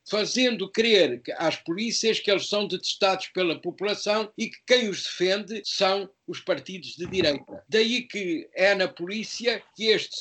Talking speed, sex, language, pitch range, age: 160 wpm, male, Portuguese, 175-220 Hz, 60-79